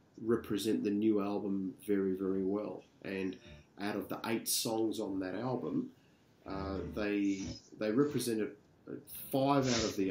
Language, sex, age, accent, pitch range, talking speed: English, male, 40-59, Australian, 100-125 Hz, 140 wpm